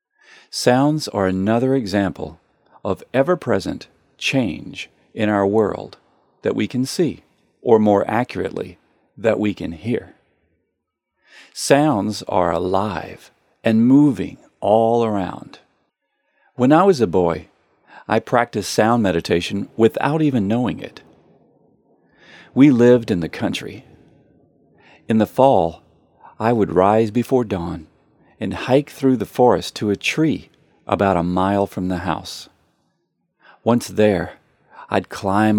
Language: English